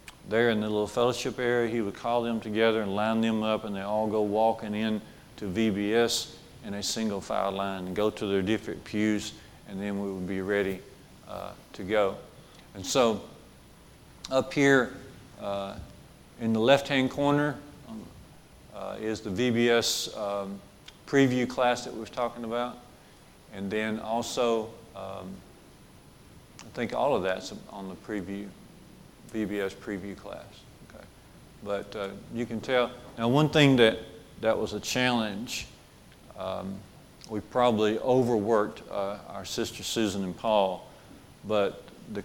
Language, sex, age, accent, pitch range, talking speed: English, male, 50-69, American, 100-120 Hz, 150 wpm